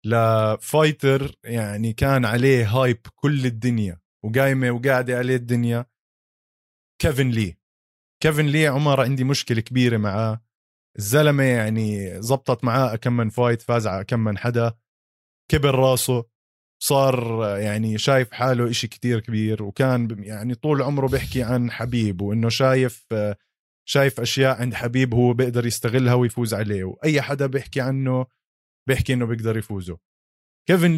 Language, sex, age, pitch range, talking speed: Arabic, male, 20-39, 110-135 Hz, 135 wpm